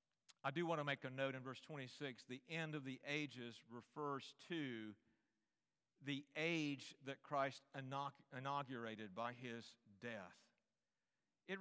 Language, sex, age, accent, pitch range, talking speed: English, male, 50-69, American, 130-160 Hz, 135 wpm